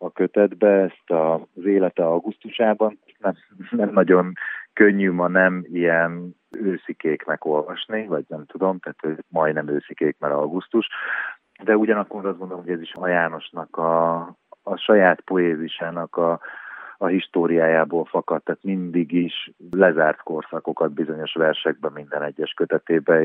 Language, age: Hungarian, 30-49